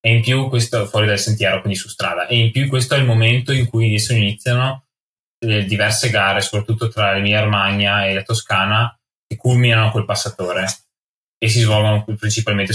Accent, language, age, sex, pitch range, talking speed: native, Italian, 20-39, male, 100-115 Hz, 185 wpm